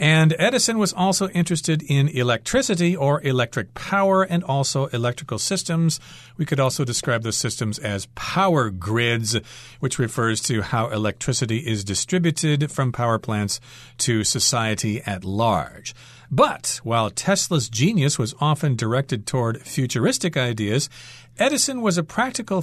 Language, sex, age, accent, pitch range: Chinese, male, 50-69, American, 120-165 Hz